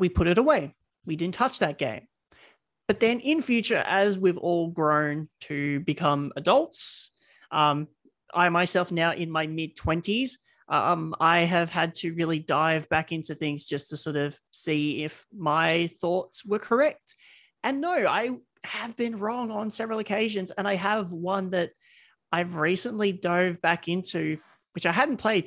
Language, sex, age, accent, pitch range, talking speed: English, male, 30-49, Australian, 155-195 Hz, 165 wpm